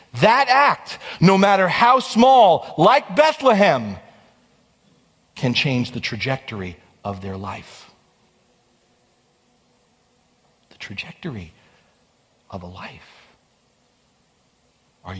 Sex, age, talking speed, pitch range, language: male, 40-59, 85 wpm, 105-160 Hz, English